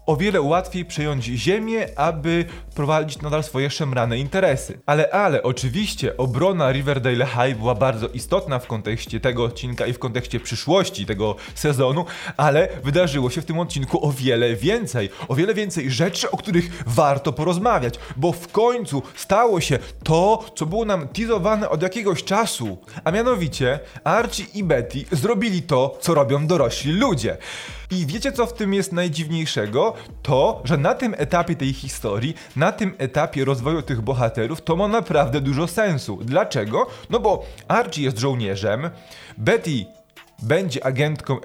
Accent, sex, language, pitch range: native, male, Polish, 130-180 Hz